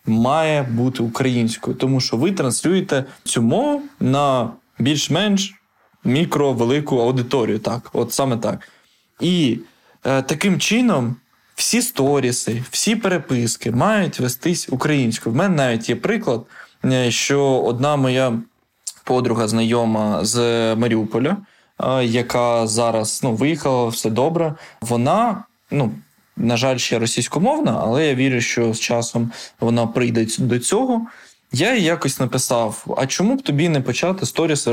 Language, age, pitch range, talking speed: Ukrainian, 20-39, 115-145 Hz, 130 wpm